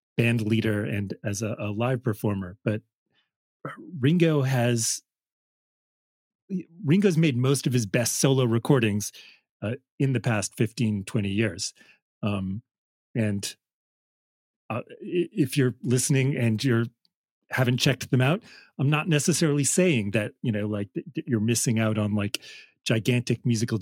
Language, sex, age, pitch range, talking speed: English, male, 40-59, 110-135 Hz, 130 wpm